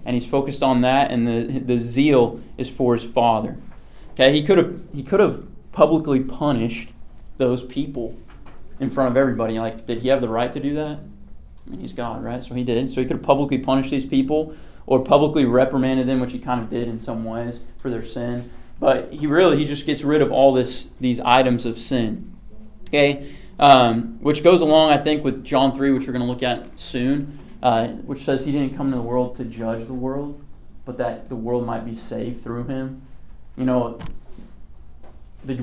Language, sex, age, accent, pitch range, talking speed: English, male, 20-39, American, 115-135 Hz, 205 wpm